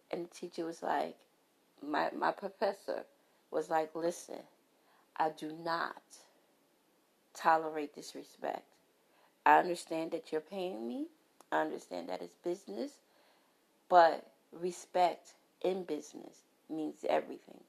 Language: English